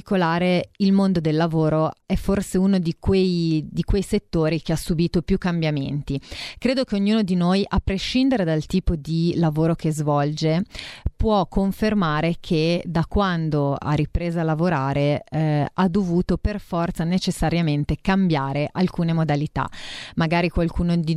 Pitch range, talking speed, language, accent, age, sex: 160-190 Hz, 140 wpm, Italian, native, 30-49, female